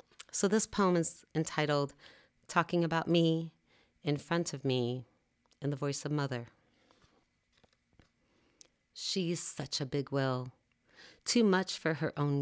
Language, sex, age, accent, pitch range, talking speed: English, female, 40-59, American, 130-175 Hz, 130 wpm